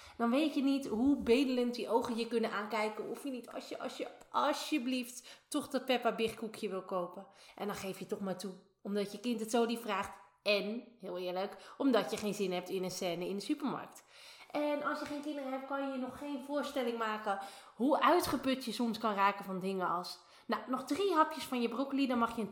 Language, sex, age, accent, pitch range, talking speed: Dutch, female, 20-39, Dutch, 195-265 Hz, 225 wpm